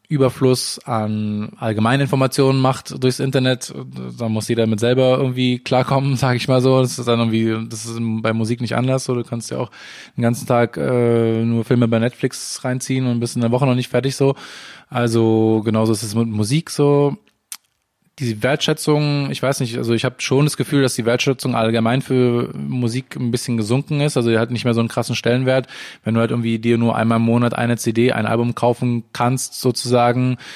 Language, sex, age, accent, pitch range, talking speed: German, male, 20-39, German, 115-125 Hz, 205 wpm